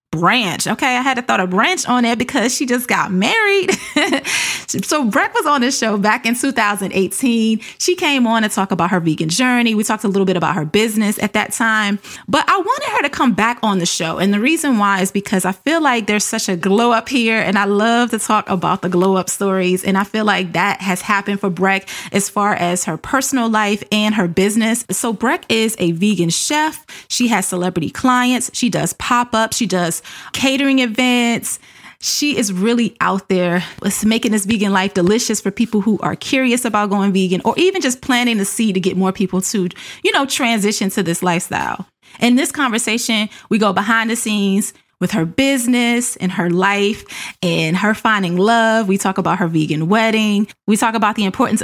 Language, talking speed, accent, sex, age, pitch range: English, 210 wpm, American, female, 30-49, 190-240 Hz